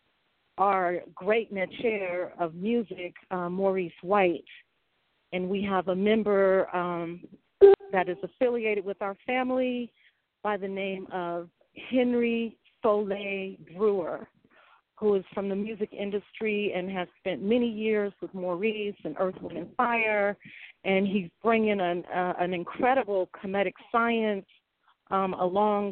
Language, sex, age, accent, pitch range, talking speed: English, female, 40-59, American, 185-215 Hz, 125 wpm